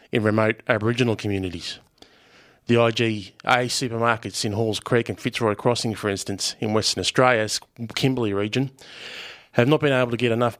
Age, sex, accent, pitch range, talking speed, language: 20-39, male, Australian, 100-115 Hz, 155 wpm, English